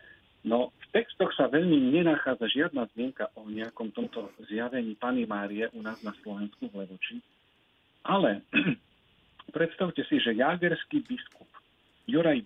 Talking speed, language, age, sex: 130 wpm, Slovak, 40-59, male